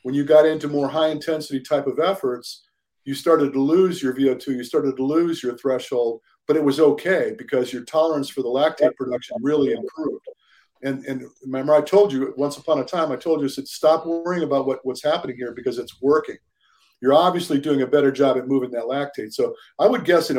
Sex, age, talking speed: male, 50-69, 220 wpm